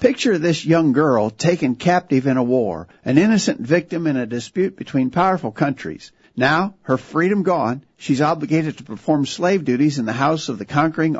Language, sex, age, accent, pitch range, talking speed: English, male, 50-69, American, 135-175 Hz, 180 wpm